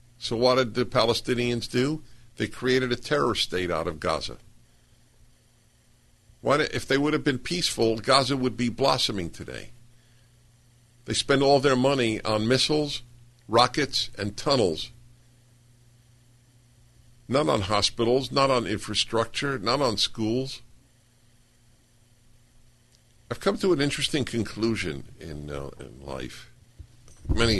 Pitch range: 90-120 Hz